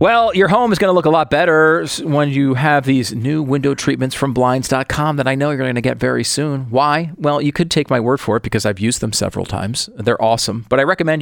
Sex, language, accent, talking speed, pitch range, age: male, English, American, 255 wpm, 110-145 Hz, 40-59